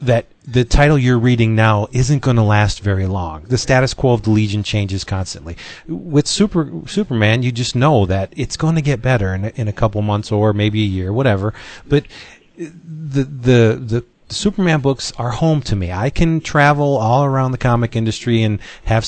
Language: English